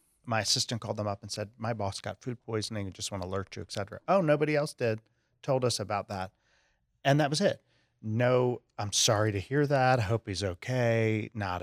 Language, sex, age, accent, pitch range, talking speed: English, male, 40-59, American, 105-130 Hz, 220 wpm